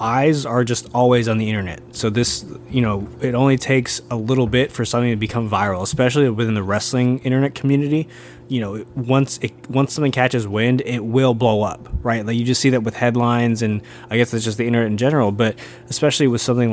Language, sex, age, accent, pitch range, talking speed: English, male, 20-39, American, 110-130 Hz, 220 wpm